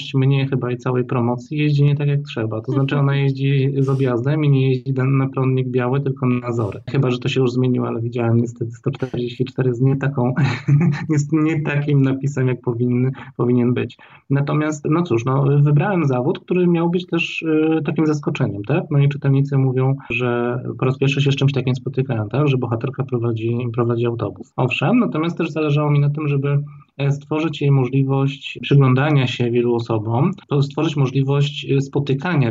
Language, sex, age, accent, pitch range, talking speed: Polish, male, 20-39, native, 125-150 Hz, 180 wpm